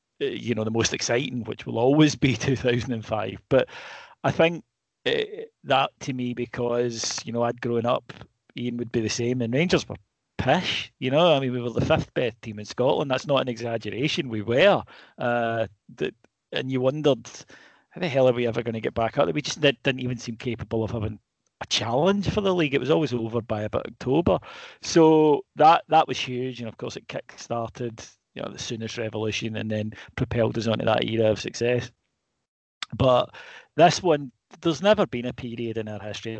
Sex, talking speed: male, 200 wpm